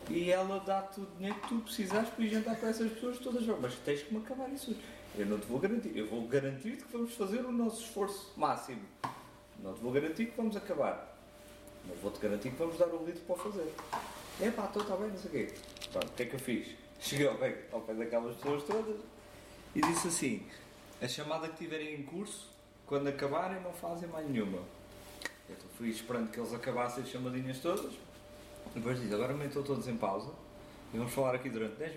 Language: Portuguese